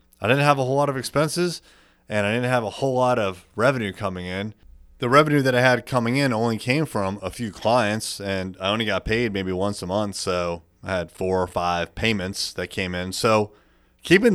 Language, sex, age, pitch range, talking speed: English, male, 30-49, 95-130 Hz, 220 wpm